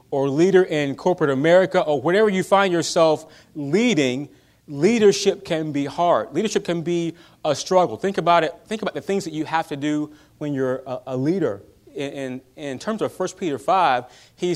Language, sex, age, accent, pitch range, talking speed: English, male, 30-49, American, 150-190 Hz, 190 wpm